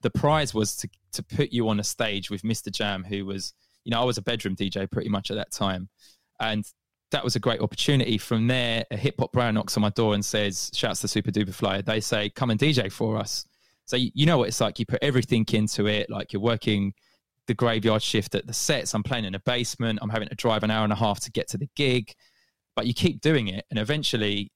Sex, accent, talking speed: male, British, 255 wpm